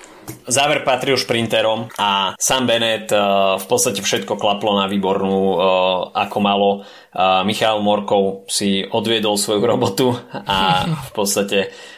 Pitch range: 95-105 Hz